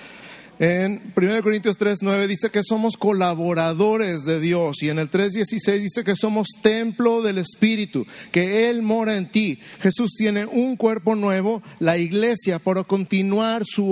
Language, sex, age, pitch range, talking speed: Spanish, male, 50-69, 180-215 Hz, 150 wpm